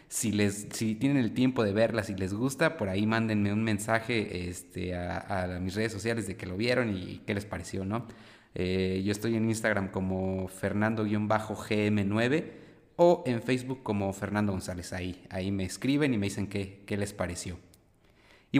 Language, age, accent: Spanish, 30-49, Mexican